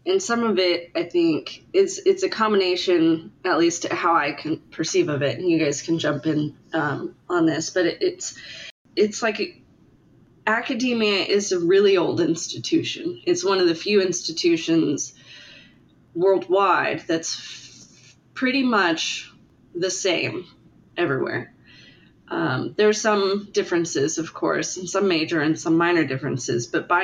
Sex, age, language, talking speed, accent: female, 20-39, English, 145 wpm, American